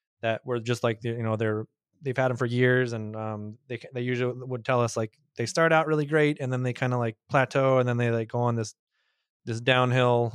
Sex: male